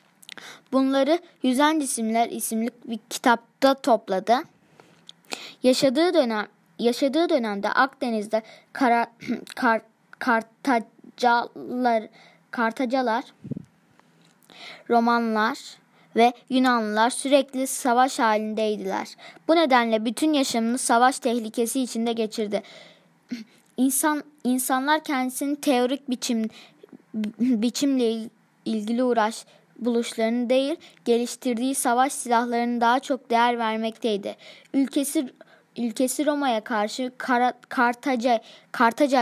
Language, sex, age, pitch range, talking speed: Turkish, female, 20-39, 225-265 Hz, 80 wpm